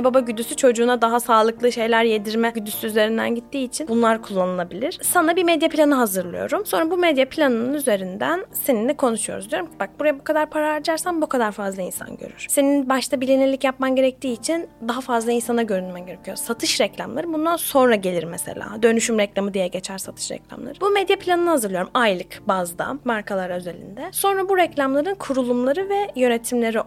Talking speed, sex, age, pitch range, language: 165 wpm, female, 10-29, 215-280 Hz, Turkish